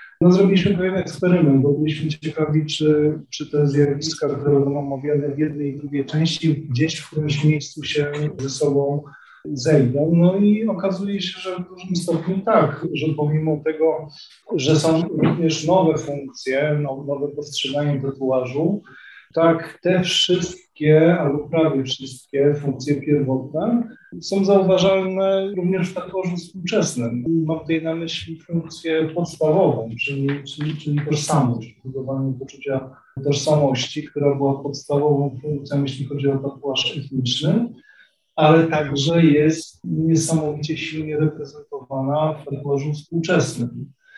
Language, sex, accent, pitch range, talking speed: Polish, male, native, 145-165 Hz, 130 wpm